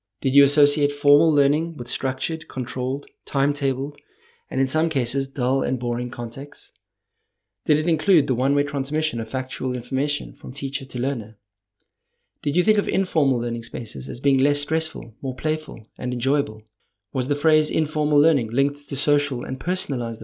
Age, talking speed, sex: 30-49, 165 wpm, male